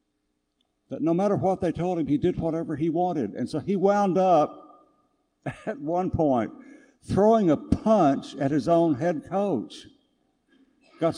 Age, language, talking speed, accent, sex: 60-79, English, 155 wpm, American, male